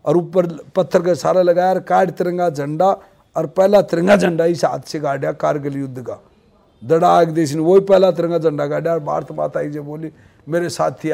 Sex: male